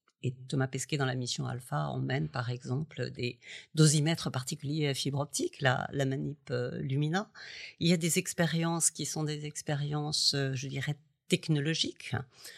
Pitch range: 135-165 Hz